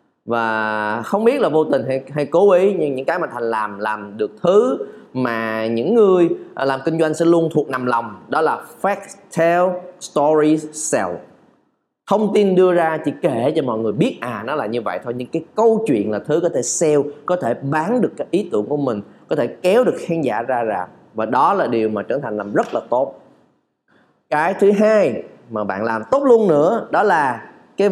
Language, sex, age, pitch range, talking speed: Vietnamese, male, 20-39, 125-195 Hz, 215 wpm